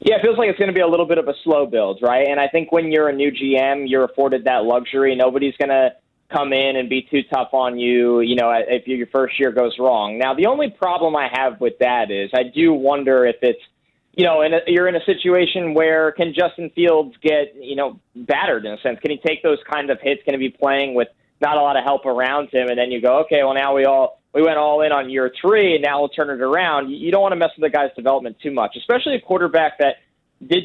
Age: 20-39